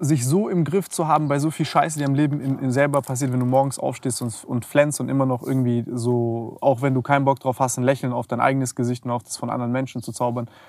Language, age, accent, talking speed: German, 20-39, German, 280 wpm